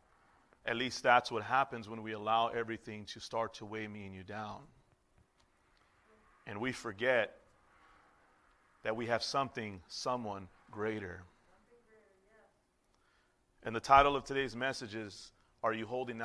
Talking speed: 135 wpm